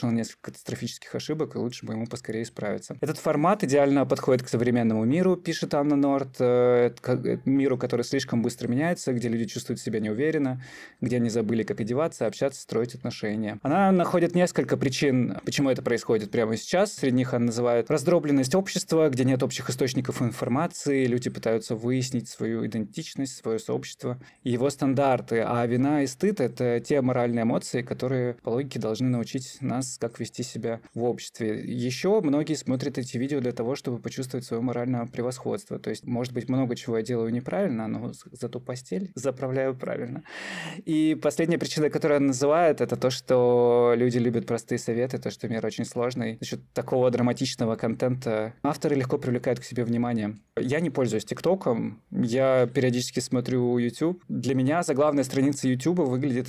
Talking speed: 165 wpm